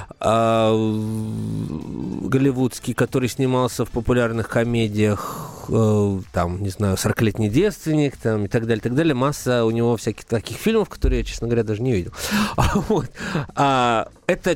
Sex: male